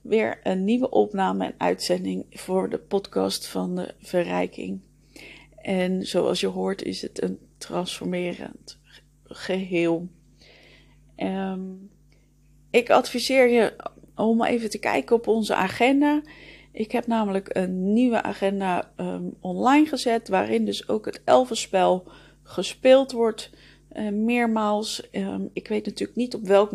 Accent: Dutch